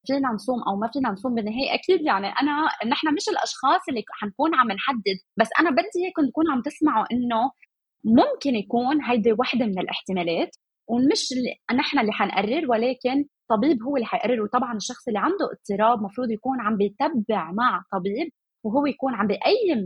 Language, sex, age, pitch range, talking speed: Arabic, female, 20-39, 200-275 Hz, 170 wpm